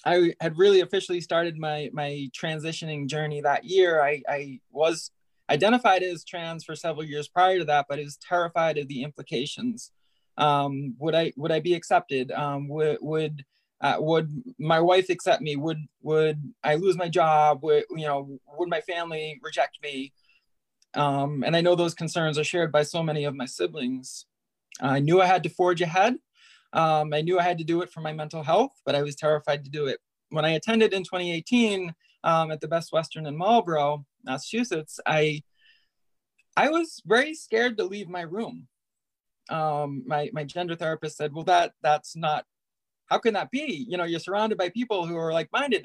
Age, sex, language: 20-39, male, English